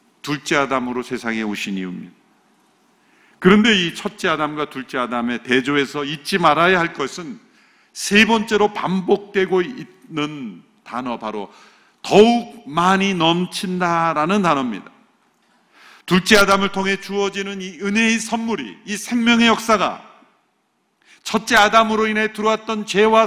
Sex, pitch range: male, 165-220 Hz